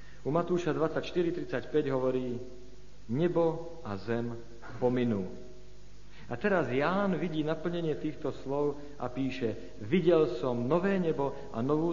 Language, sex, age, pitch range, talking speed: Slovak, male, 50-69, 120-155 Hz, 115 wpm